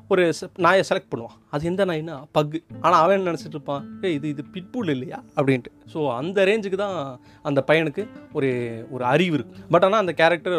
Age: 30-49